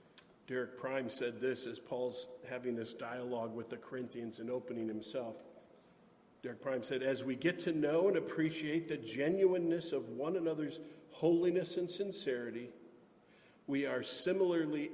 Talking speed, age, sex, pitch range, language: 145 wpm, 50-69, male, 125-170 Hz, English